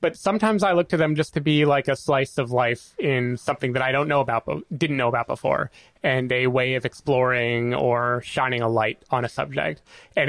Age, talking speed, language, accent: 30-49, 220 wpm, English, American